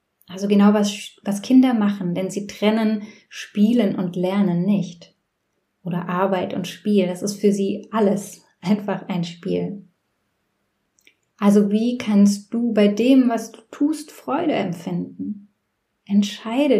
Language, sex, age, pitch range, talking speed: German, female, 10-29, 190-220 Hz, 130 wpm